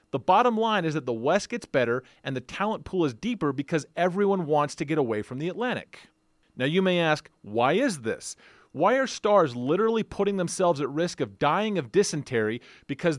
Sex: male